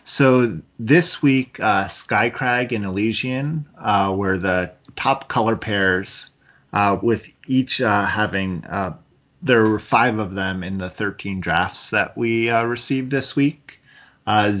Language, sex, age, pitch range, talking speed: English, male, 30-49, 100-125 Hz, 145 wpm